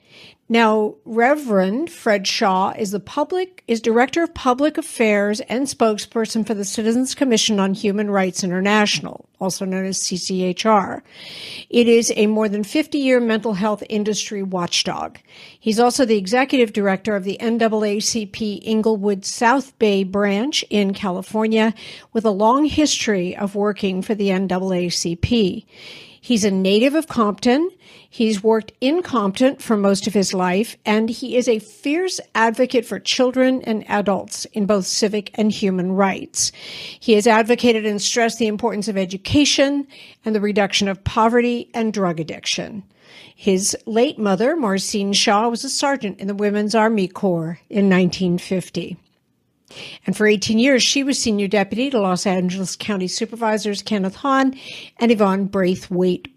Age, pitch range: 60-79, 195-235 Hz